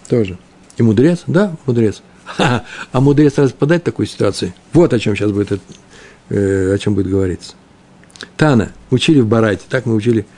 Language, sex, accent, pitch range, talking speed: Russian, male, native, 110-150 Hz, 160 wpm